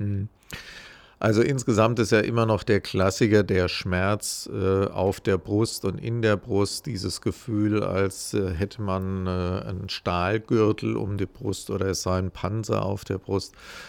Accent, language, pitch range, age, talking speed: German, German, 95-110 Hz, 50-69, 150 wpm